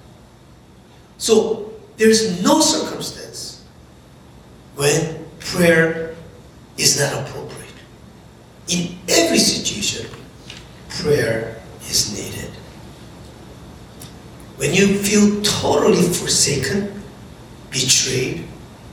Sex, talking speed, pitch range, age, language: male, 70 wpm, 150-225 Hz, 60-79, English